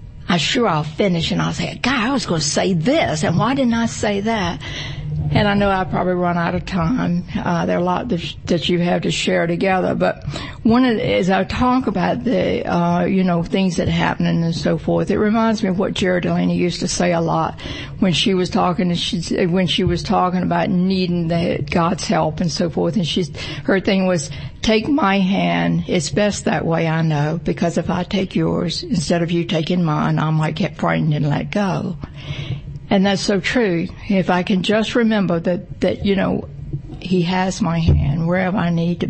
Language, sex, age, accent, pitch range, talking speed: English, female, 60-79, American, 165-195 Hz, 215 wpm